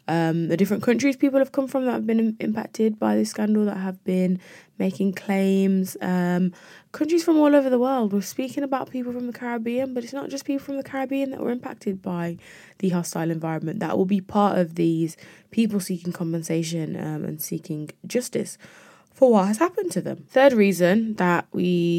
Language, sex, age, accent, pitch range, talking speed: English, female, 20-39, British, 170-215 Hz, 195 wpm